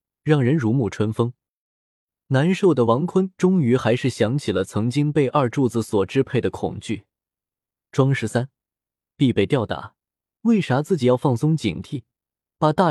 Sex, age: male, 20-39